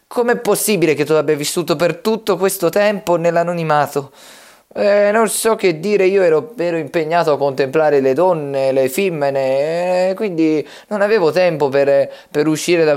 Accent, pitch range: native, 140-200 Hz